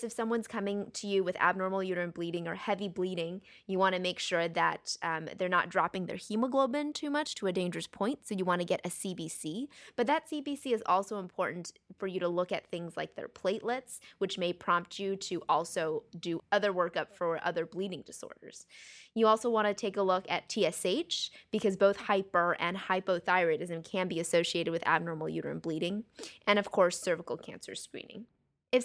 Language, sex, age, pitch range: English, female, 20-39, 175-225 Hz